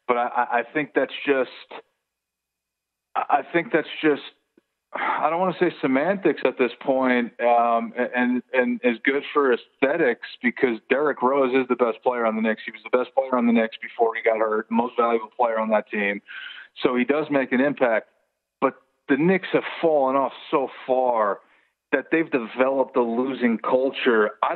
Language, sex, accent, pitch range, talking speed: English, male, American, 115-145 Hz, 185 wpm